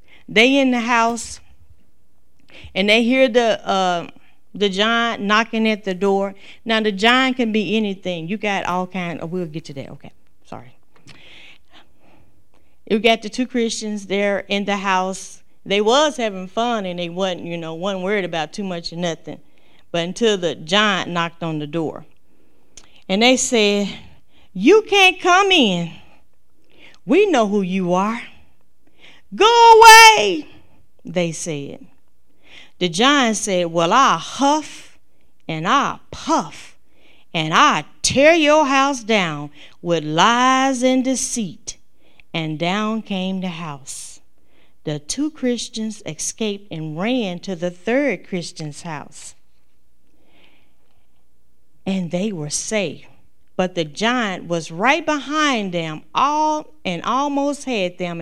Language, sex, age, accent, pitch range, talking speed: English, female, 40-59, American, 170-245 Hz, 135 wpm